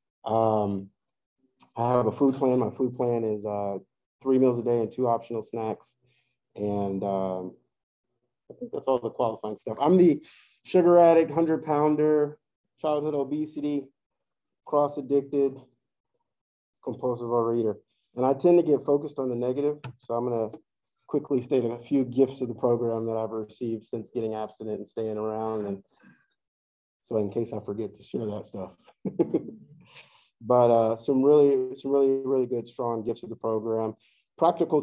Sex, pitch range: male, 110-135 Hz